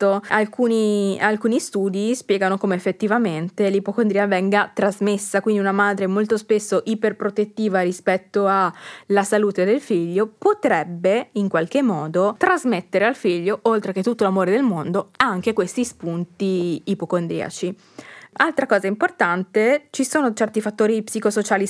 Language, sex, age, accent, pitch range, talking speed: Italian, female, 20-39, native, 190-225 Hz, 125 wpm